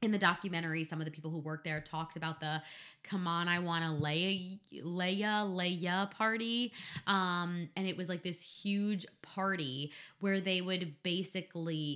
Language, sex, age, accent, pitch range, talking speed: English, female, 20-39, American, 160-195 Hz, 160 wpm